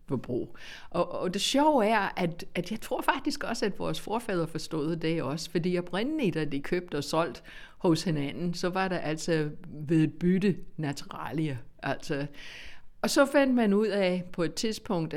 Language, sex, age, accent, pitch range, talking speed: Danish, female, 60-79, native, 155-185 Hz, 175 wpm